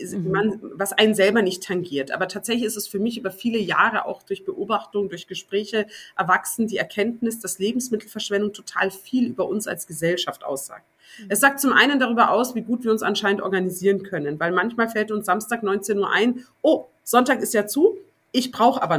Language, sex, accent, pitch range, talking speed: German, female, German, 200-250 Hz, 195 wpm